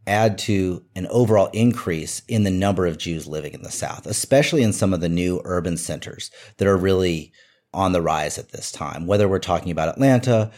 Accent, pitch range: American, 90-120 Hz